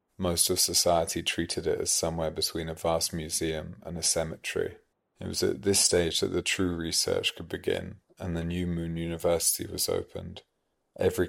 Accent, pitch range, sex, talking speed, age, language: British, 80-85 Hz, male, 175 wpm, 30-49, English